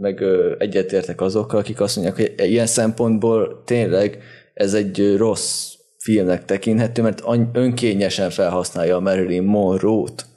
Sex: male